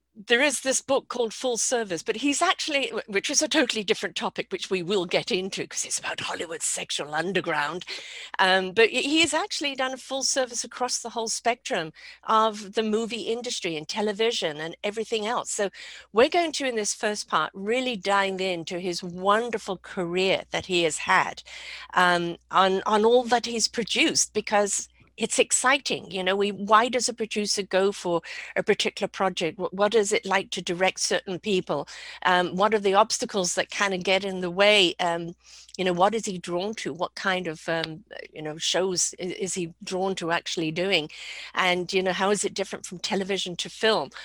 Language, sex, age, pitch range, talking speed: English, female, 50-69, 170-225 Hz, 195 wpm